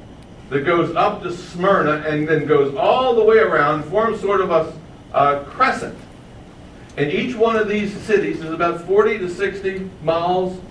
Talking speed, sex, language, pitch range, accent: 170 wpm, male, English, 150-205 Hz, American